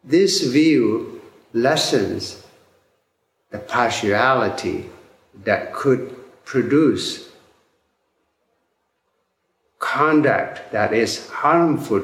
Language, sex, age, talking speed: English, male, 60-79, 60 wpm